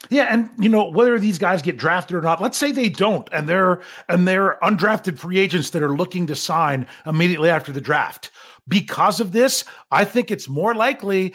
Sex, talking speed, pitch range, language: male, 205 wpm, 155-210 Hz, English